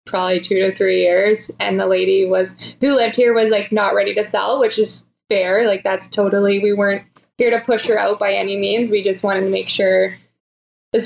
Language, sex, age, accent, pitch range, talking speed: English, female, 20-39, American, 195-225 Hz, 220 wpm